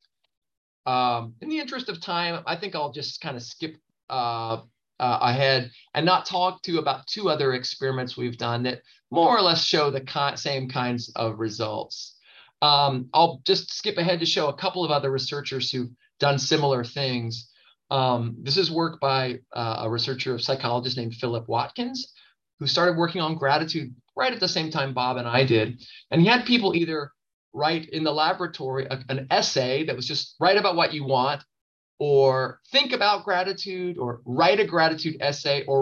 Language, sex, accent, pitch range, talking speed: English, male, American, 125-170 Hz, 180 wpm